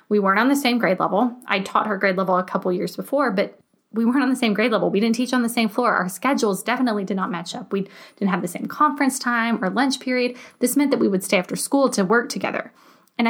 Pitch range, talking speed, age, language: 195-245 Hz, 270 wpm, 20-39, English